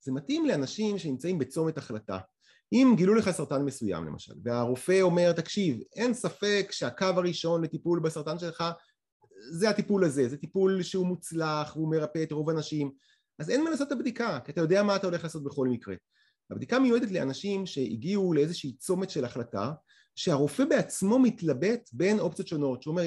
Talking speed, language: 165 wpm, Hebrew